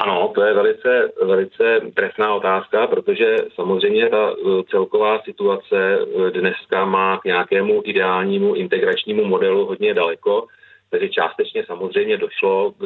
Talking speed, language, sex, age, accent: 120 wpm, Czech, male, 40-59, native